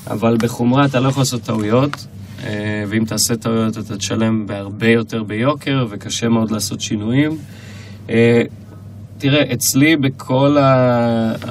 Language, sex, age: Hebrew, male, 20-39